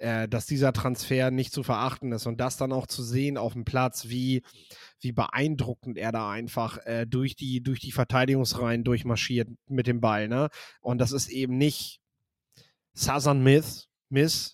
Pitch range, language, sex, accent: 125-140 Hz, German, male, German